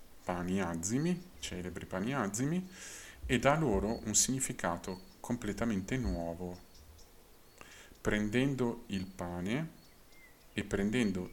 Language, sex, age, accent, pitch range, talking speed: Italian, male, 50-69, native, 85-105 Hz, 90 wpm